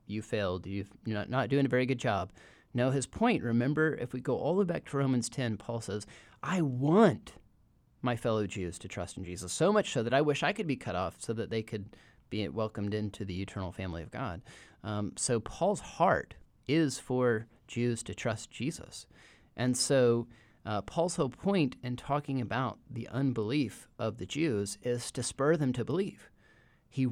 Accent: American